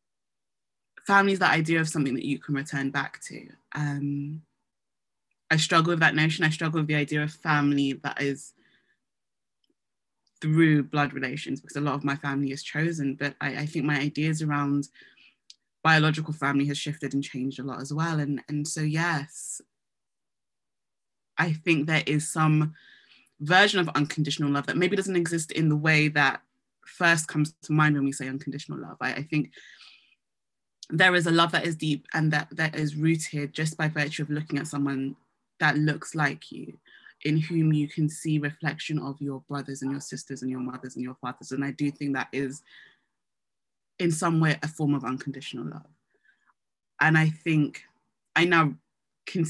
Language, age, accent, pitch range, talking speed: English, 20-39, British, 140-160 Hz, 180 wpm